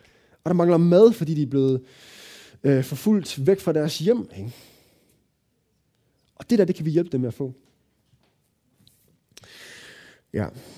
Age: 20-39